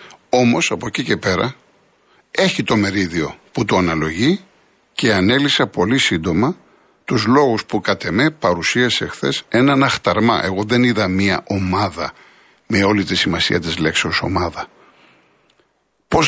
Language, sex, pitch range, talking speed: Greek, male, 100-135 Hz, 135 wpm